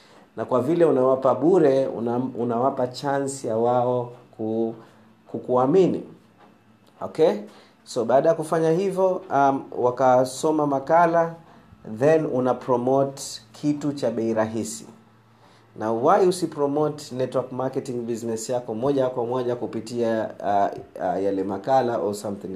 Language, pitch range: Swahili, 115-140 Hz